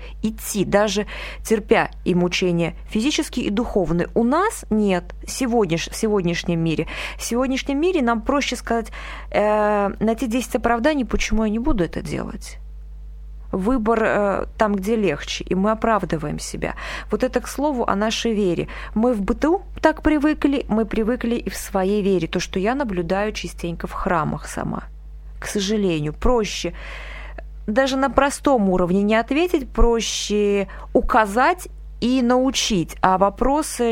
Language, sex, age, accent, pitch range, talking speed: Russian, female, 20-39, native, 180-235 Hz, 145 wpm